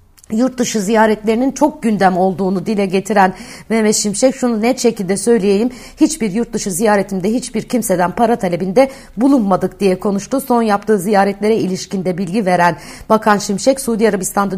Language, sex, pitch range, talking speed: Turkish, female, 190-235 Hz, 135 wpm